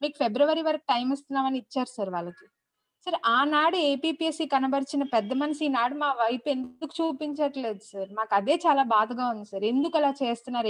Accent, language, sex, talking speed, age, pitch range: native, Telugu, female, 165 wpm, 20-39, 235-300 Hz